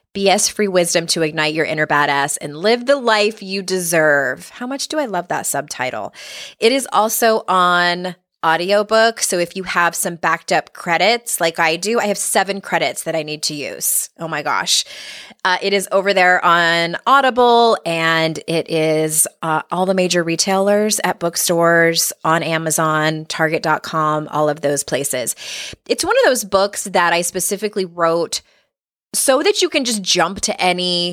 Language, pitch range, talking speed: English, 165-210 Hz, 170 wpm